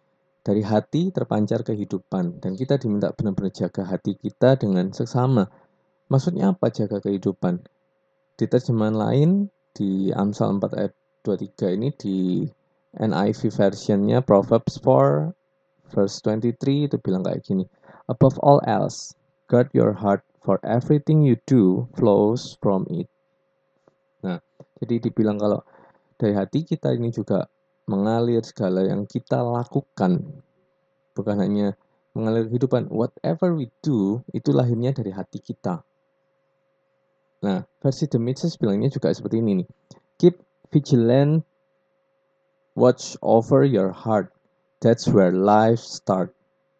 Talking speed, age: 120 wpm, 20-39